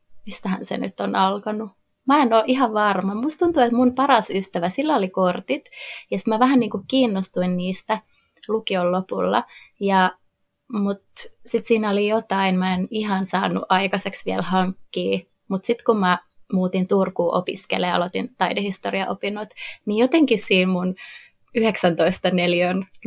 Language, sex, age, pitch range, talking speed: Finnish, female, 20-39, 185-235 Hz, 140 wpm